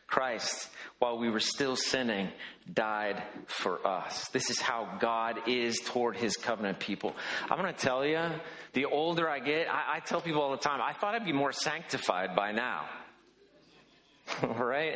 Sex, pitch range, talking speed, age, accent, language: male, 125-165 Hz, 175 wpm, 40-59, American, English